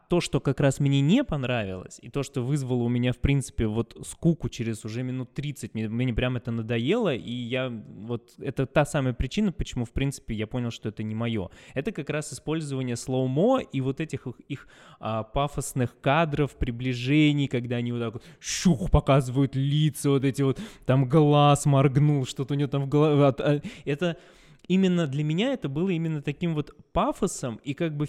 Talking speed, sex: 190 wpm, male